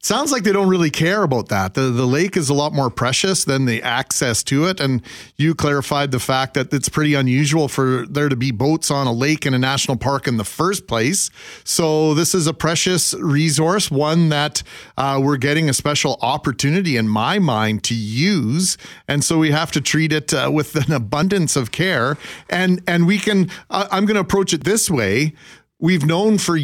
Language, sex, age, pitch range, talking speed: English, male, 40-59, 135-165 Hz, 210 wpm